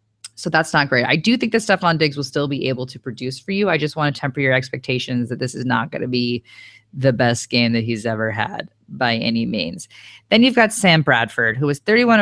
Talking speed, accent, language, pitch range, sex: 245 wpm, American, English, 130-195 Hz, female